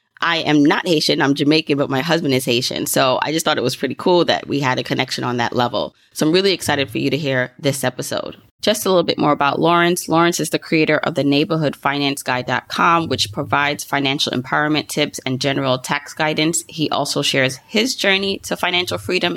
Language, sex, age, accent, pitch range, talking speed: English, female, 20-39, American, 140-175 Hz, 210 wpm